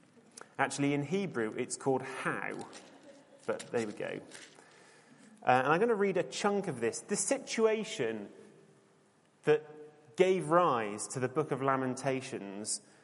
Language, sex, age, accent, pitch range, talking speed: English, male, 30-49, British, 120-165 Hz, 140 wpm